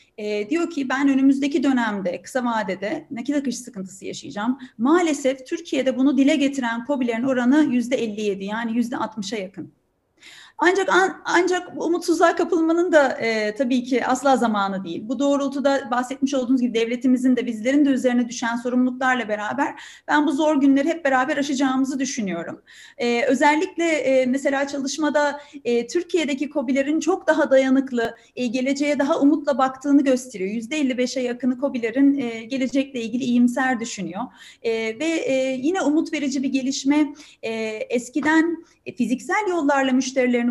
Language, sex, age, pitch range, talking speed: Turkish, female, 30-49, 245-295 Hz, 140 wpm